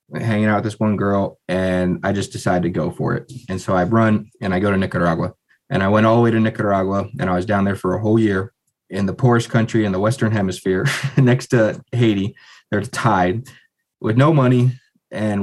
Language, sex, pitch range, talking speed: English, male, 95-115 Hz, 220 wpm